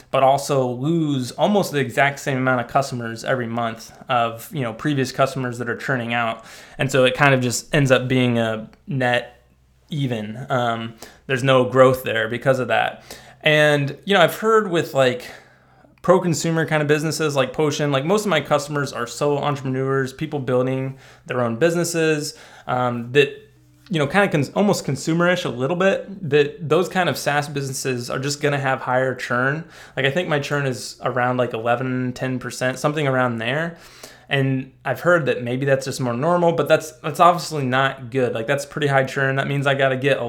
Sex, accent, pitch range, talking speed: male, American, 125-155 Hz, 195 wpm